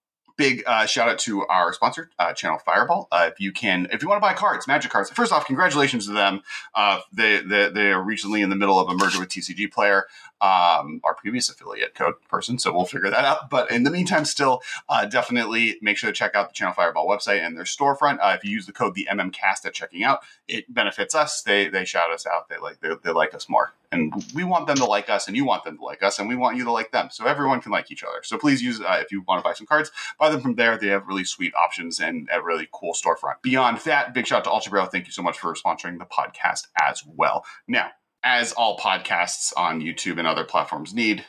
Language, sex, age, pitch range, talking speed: English, male, 30-49, 100-140 Hz, 255 wpm